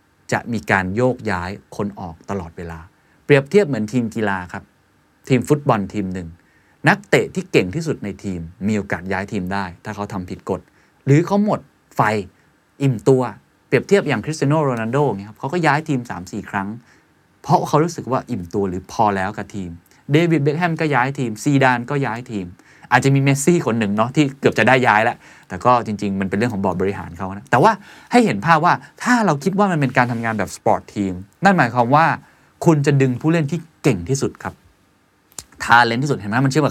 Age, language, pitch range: 20-39, Thai, 100-150 Hz